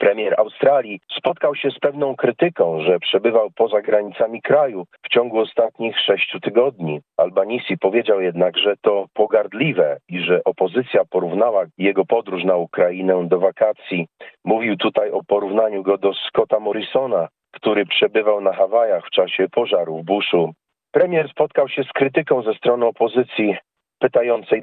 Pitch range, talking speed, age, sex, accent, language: 95-125 Hz, 140 wpm, 40-59, male, native, Polish